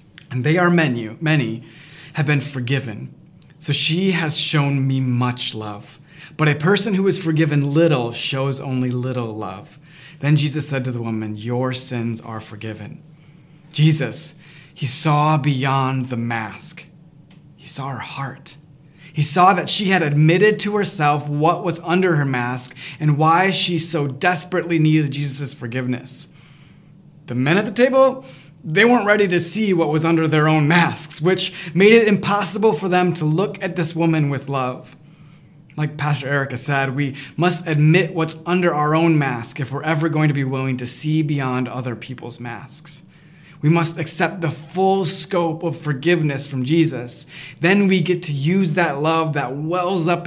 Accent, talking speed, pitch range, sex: American, 170 wpm, 135-170 Hz, male